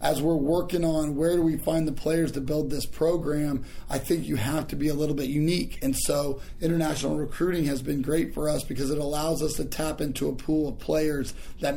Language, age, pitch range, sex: English, 30-49, 130-160 Hz, male